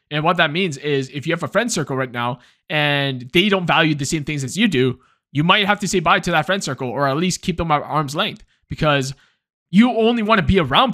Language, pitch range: English, 145-200 Hz